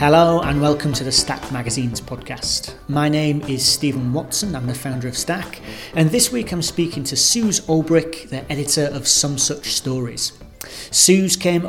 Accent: British